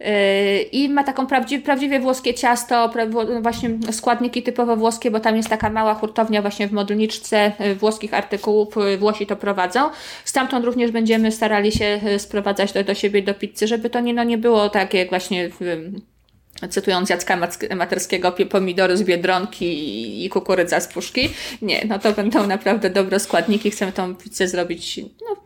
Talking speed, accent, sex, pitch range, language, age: 160 wpm, native, female, 195-245 Hz, Polish, 20-39